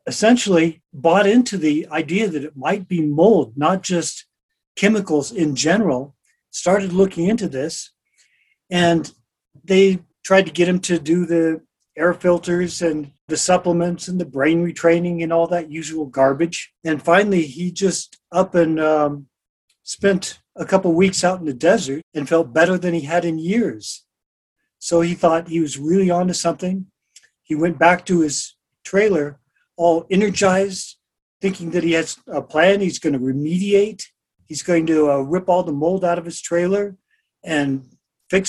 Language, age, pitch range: English, 40-59, 155-190 Hz